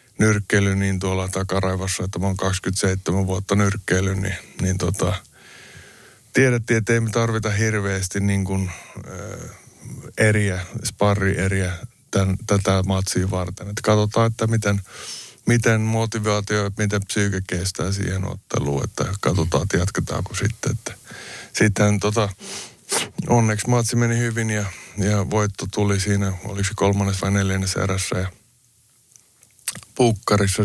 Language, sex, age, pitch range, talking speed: Finnish, male, 20-39, 95-110 Hz, 125 wpm